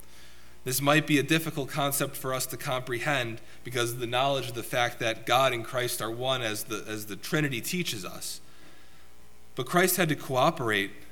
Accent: American